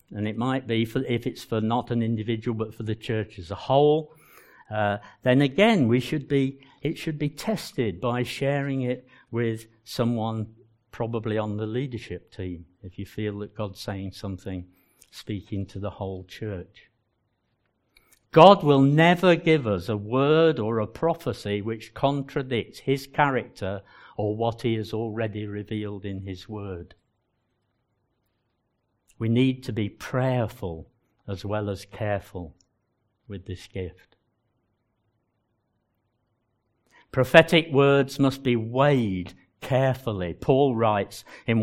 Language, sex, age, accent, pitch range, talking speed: English, male, 60-79, British, 105-130 Hz, 135 wpm